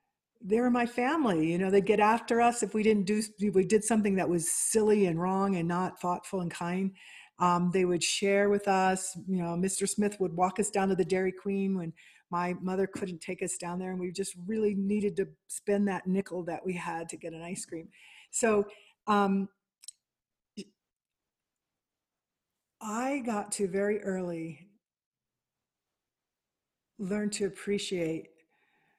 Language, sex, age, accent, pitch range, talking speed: English, female, 50-69, American, 170-200 Hz, 165 wpm